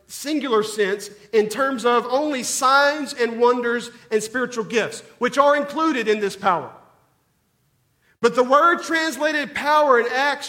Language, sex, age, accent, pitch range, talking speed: English, male, 40-59, American, 230-295 Hz, 145 wpm